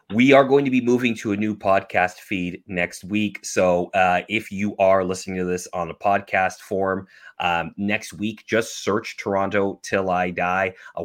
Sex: male